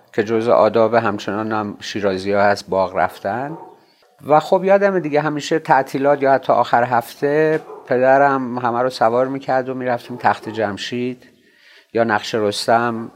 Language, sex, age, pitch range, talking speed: Persian, male, 50-69, 110-140 Hz, 135 wpm